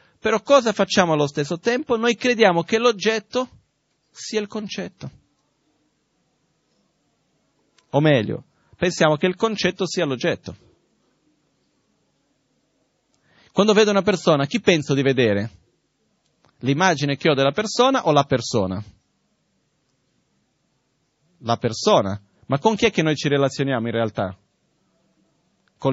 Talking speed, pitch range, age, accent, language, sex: 115 wpm, 125-190 Hz, 30-49, native, Italian, male